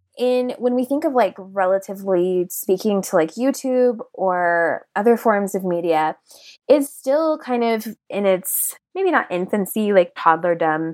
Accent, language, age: American, English, 20-39